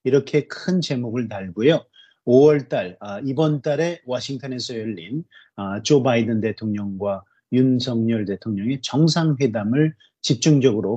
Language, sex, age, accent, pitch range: Korean, male, 30-49, native, 110-150 Hz